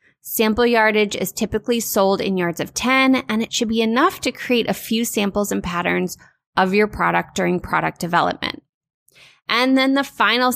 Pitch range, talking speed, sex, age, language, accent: 195-235 Hz, 175 wpm, female, 20-39, English, American